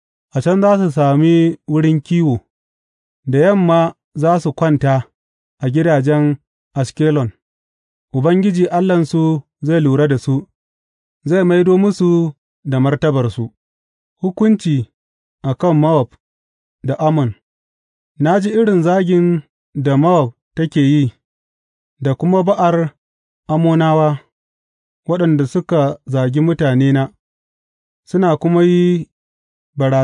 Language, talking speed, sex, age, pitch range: English, 90 wpm, male, 30-49, 130-165 Hz